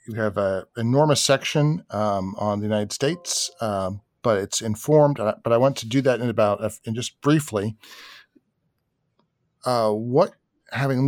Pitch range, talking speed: 105-130 Hz, 150 wpm